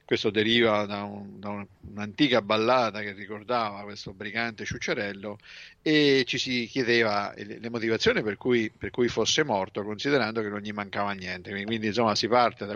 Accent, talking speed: native, 170 wpm